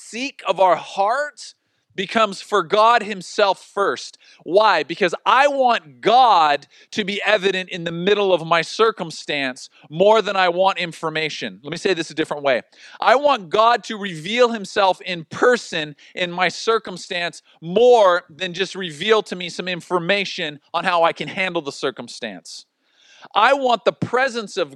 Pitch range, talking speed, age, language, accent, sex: 170-215 Hz, 160 wpm, 40-59, English, American, male